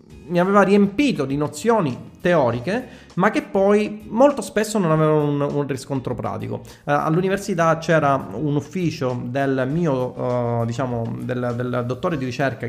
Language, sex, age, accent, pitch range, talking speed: Italian, male, 30-49, native, 130-180 Hz, 145 wpm